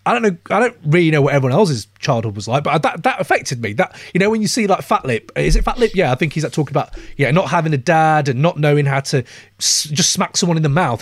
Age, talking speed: 30-49, 290 wpm